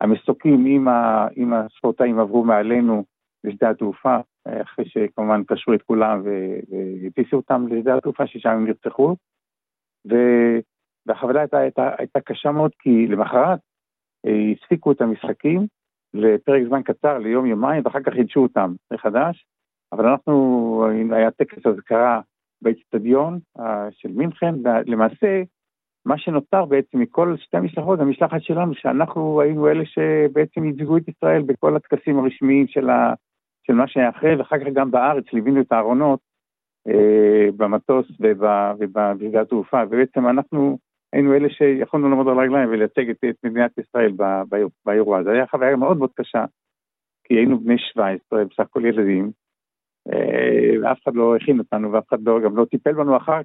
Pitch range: 110-145 Hz